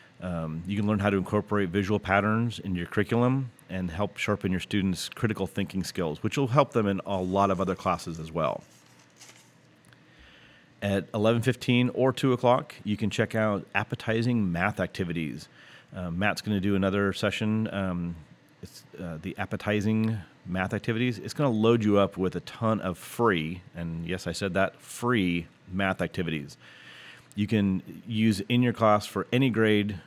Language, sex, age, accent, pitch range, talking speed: English, male, 30-49, American, 90-110 Hz, 170 wpm